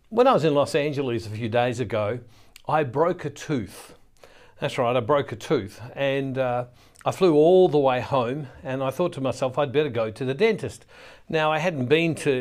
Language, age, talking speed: English, 60-79, 215 wpm